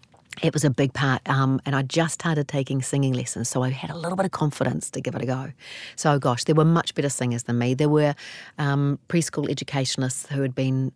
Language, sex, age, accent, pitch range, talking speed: English, female, 40-59, Australian, 130-175 Hz, 235 wpm